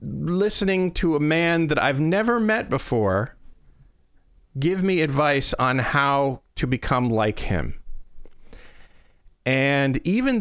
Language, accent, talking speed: English, American, 115 wpm